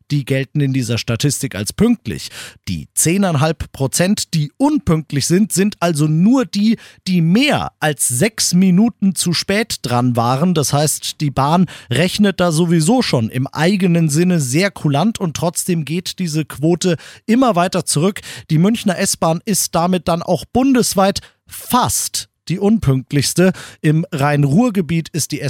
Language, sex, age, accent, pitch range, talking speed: German, male, 40-59, German, 135-180 Hz, 145 wpm